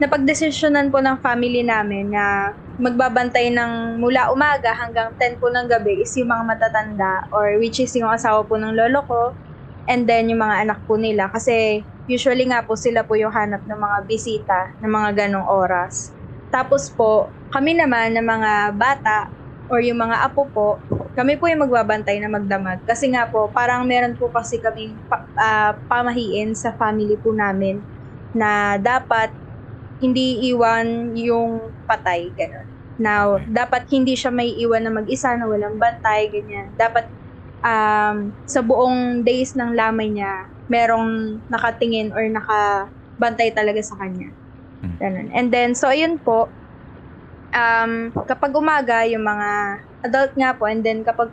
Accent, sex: native, female